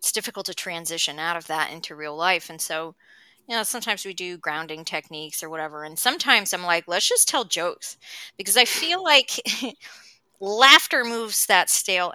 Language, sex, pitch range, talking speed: English, female, 175-235 Hz, 185 wpm